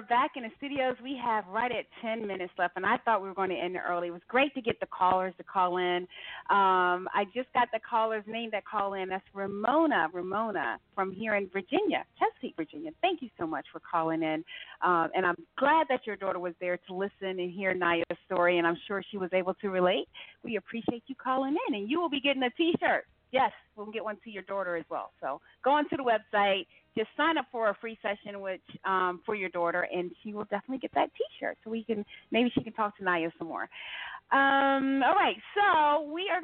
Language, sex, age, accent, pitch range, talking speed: English, female, 40-59, American, 185-265 Hz, 235 wpm